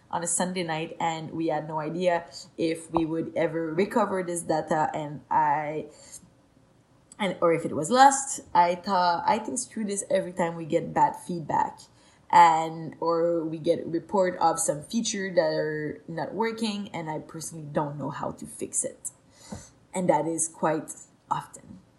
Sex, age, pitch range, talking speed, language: female, 20-39, 160-200 Hz, 170 wpm, English